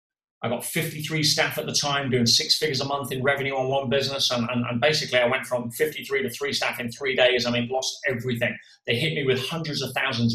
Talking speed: 245 wpm